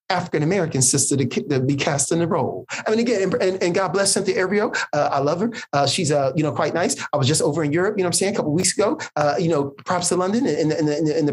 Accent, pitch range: American, 155-220 Hz